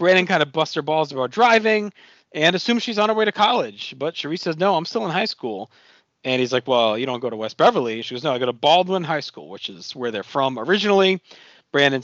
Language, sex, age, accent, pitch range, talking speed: English, male, 40-59, American, 125-175 Hz, 255 wpm